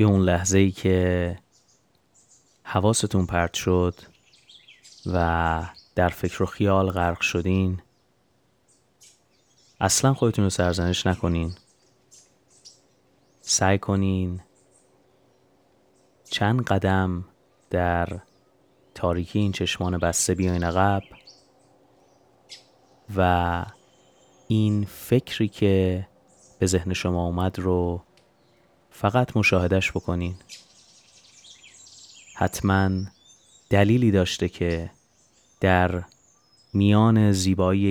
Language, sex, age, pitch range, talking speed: Persian, male, 30-49, 90-105 Hz, 80 wpm